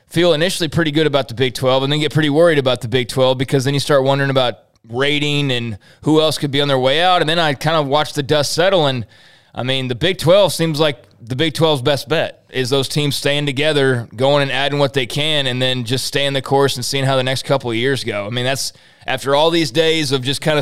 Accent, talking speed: American, 265 wpm